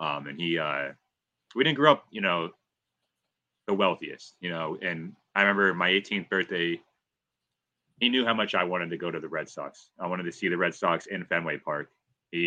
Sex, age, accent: male, 30-49, American